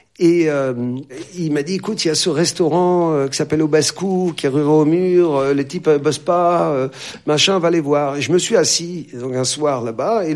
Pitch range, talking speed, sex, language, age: 140-185 Hz, 250 wpm, male, French, 50-69